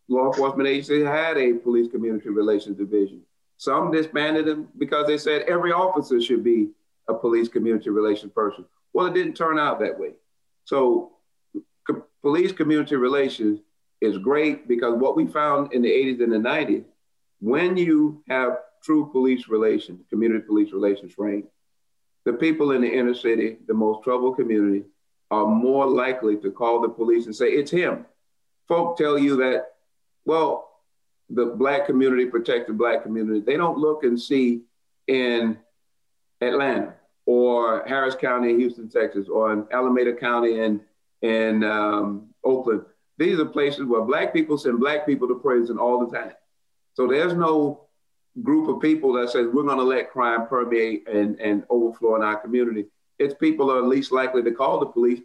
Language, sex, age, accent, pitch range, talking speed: English, male, 40-59, American, 115-150 Hz, 165 wpm